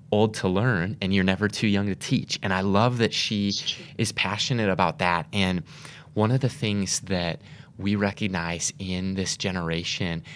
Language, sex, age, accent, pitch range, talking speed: English, male, 20-39, American, 100-130 Hz, 175 wpm